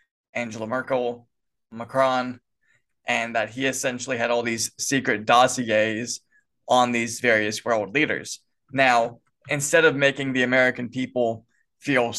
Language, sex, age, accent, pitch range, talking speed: English, male, 20-39, American, 120-140 Hz, 125 wpm